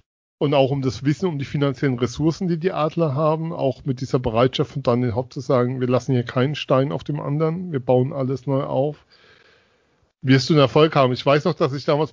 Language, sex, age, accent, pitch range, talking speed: German, male, 40-59, German, 130-155 Hz, 230 wpm